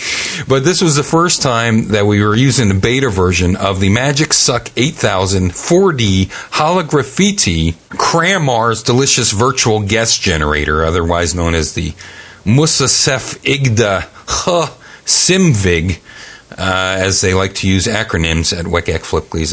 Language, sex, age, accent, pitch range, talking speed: English, male, 40-59, American, 100-165 Hz, 130 wpm